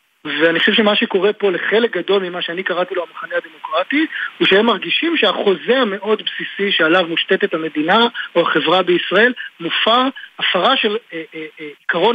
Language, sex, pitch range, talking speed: Hebrew, male, 175-230 Hz, 145 wpm